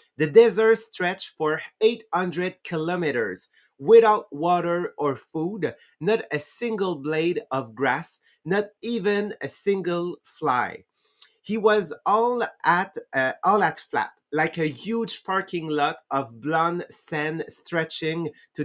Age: 30-49